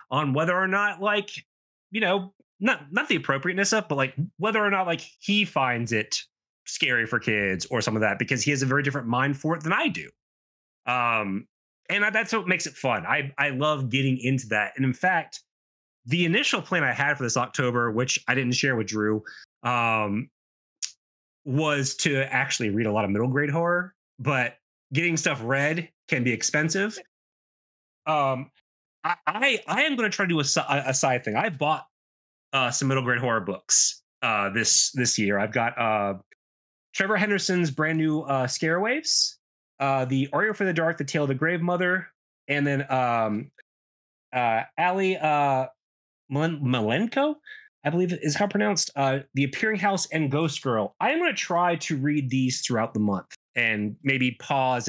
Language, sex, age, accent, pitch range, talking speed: English, male, 30-49, American, 125-175 Hz, 185 wpm